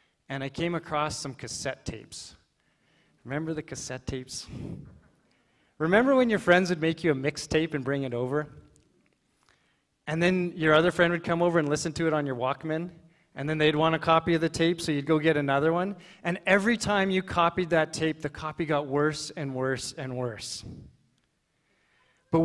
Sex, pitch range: male, 140-175 Hz